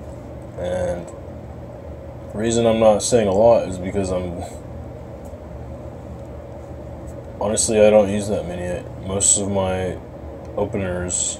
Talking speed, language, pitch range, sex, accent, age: 110 wpm, English, 85-105 Hz, male, American, 20-39